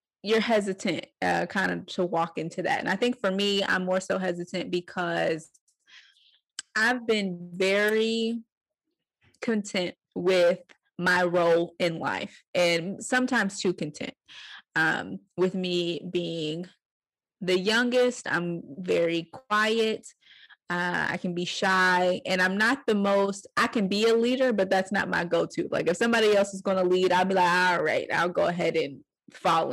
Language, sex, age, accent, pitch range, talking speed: English, female, 20-39, American, 175-220 Hz, 160 wpm